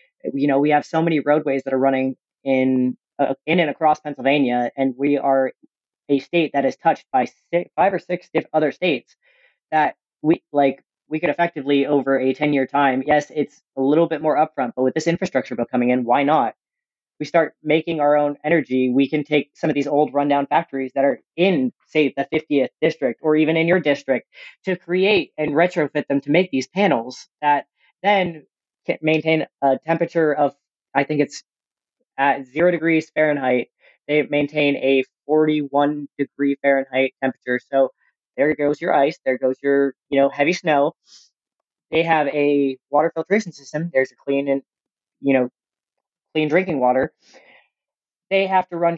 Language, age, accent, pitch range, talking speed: English, 30-49, American, 135-165 Hz, 175 wpm